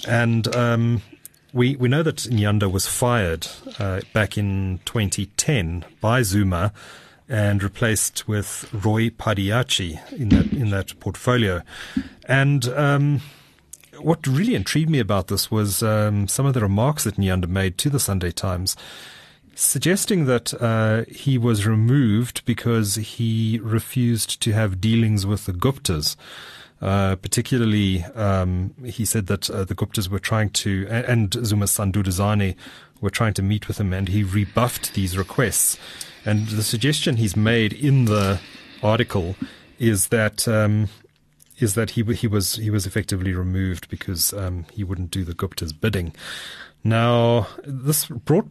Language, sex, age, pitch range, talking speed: English, male, 30-49, 100-120 Hz, 145 wpm